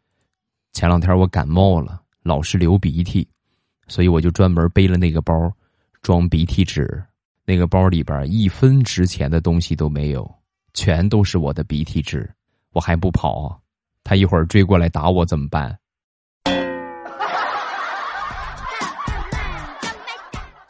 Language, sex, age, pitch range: Chinese, male, 20-39, 80-95 Hz